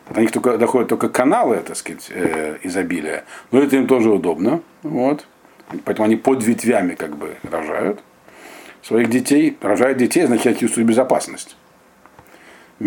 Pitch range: 115-150 Hz